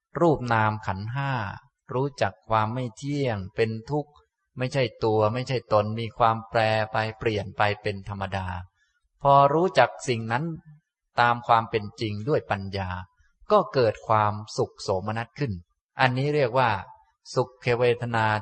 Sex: male